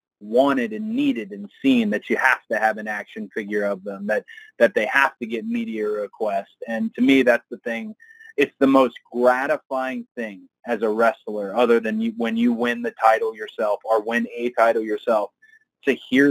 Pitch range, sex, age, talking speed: 115-150 Hz, male, 30-49, 195 wpm